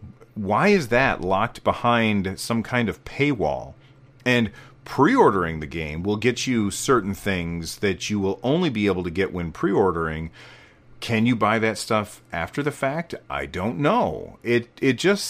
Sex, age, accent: male, 40-59, American